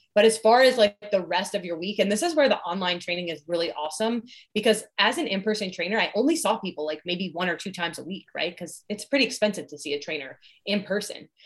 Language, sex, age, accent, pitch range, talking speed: English, female, 20-39, American, 170-215 Hz, 250 wpm